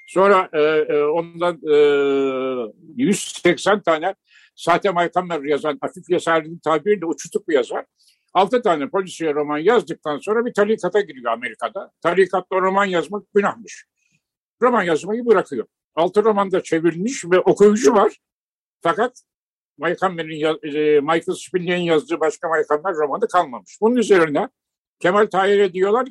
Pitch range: 155-205 Hz